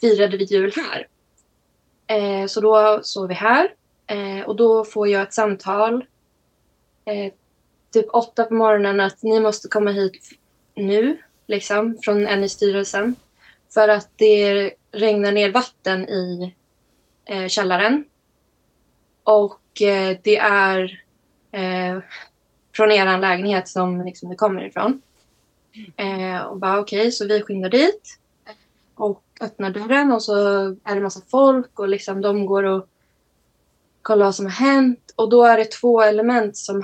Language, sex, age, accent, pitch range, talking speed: Swedish, female, 20-39, native, 195-220 Hz, 145 wpm